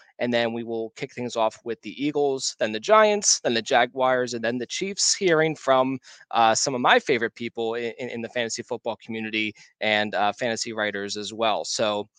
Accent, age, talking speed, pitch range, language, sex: American, 20-39, 200 wpm, 115-150 Hz, English, male